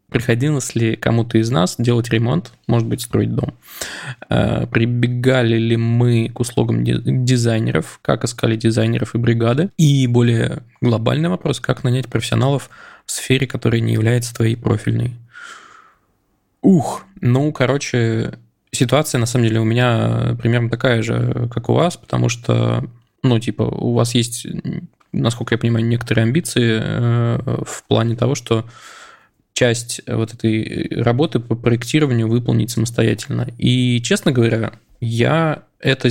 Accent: native